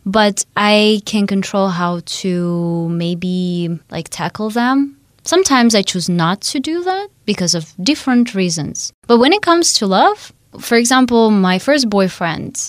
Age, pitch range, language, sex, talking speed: 20-39, 170-220 Hz, English, female, 150 wpm